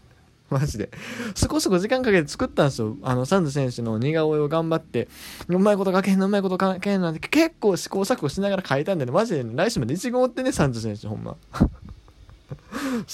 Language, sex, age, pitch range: Japanese, male, 20-39, 125-180 Hz